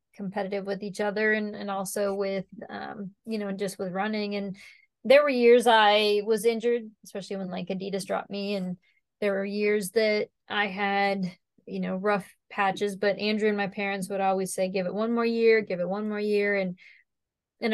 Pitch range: 195-215 Hz